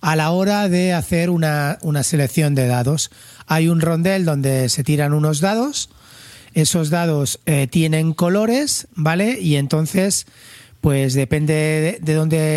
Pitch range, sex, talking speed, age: 145-175 Hz, male, 150 wpm, 40-59